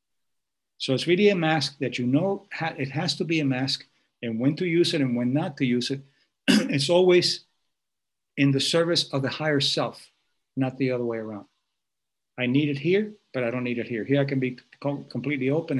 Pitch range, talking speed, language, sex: 125-150 Hz, 210 wpm, English, male